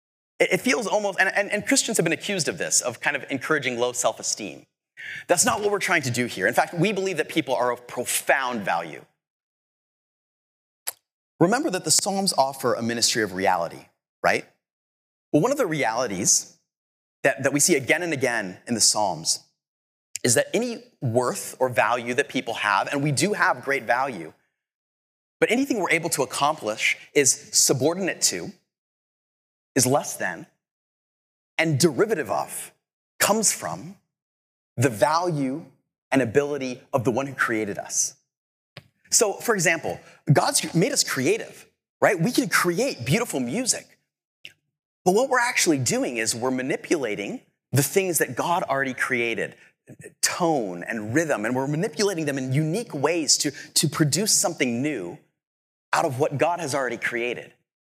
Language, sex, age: English, male, 30-49